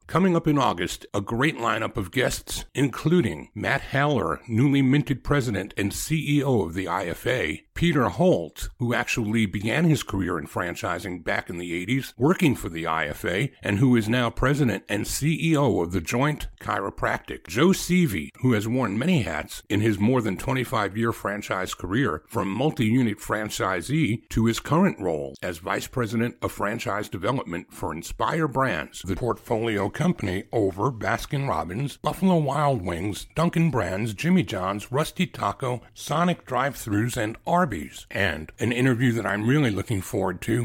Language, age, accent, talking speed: English, 50-69, American, 155 wpm